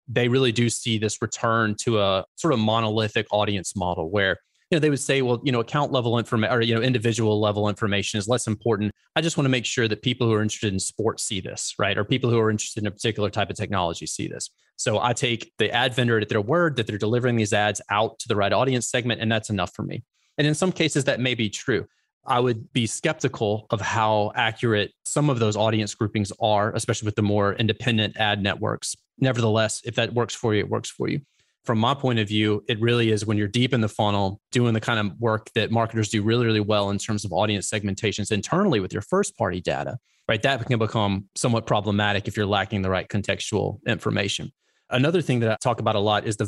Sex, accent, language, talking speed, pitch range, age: male, American, English, 240 wpm, 105-120 Hz, 30-49